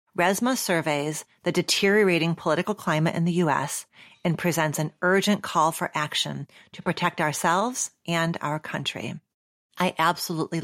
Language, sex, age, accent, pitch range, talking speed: English, female, 40-59, American, 150-185 Hz, 135 wpm